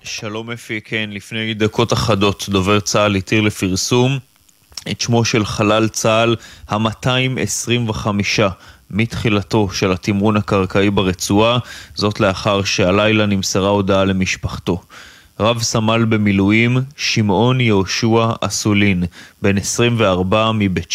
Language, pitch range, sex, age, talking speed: Hebrew, 100-120 Hz, male, 20-39, 105 wpm